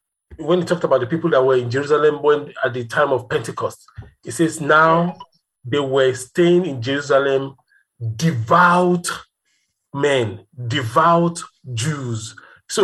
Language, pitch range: English, 130-175 Hz